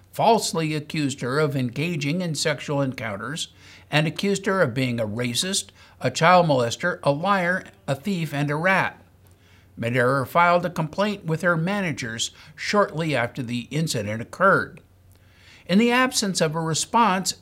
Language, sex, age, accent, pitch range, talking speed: English, male, 60-79, American, 130-185 Hz, 150 wpm